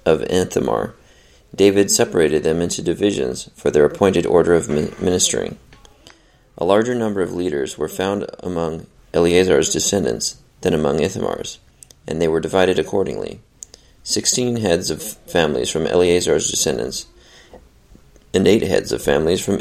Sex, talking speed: male, 130 wpm